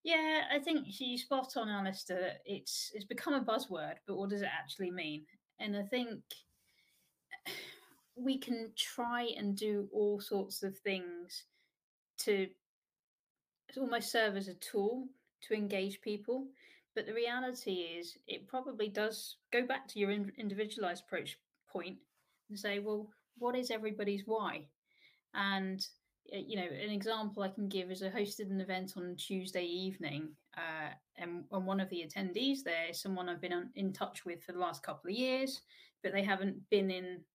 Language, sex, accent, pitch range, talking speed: English, female, British, 185-225 Hz, 160 wpm